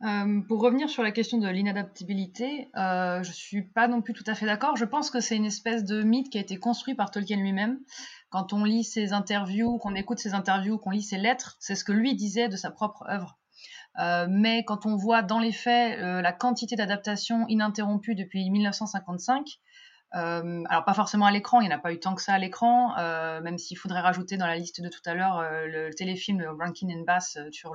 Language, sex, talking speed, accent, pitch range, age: French, female, 235 wpm, French, 180-230 Hz, 30-49